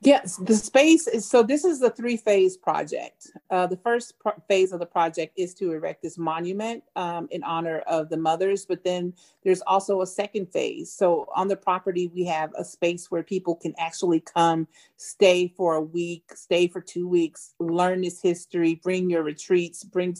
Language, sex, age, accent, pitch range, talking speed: English, female, 40-59, American, 170-205 Hz, 190 wpm